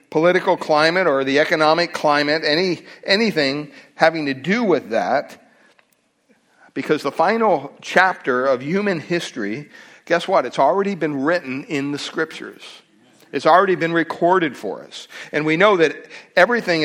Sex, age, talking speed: male, 60-79, 145 wpm